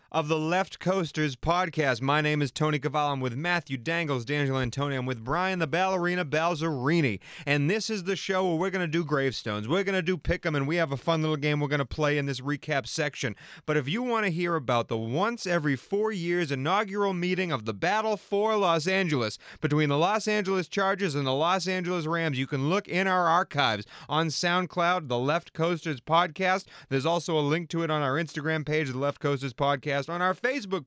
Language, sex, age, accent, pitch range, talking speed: English, male, 30-49, American, 140-180 Hz, 220 wpm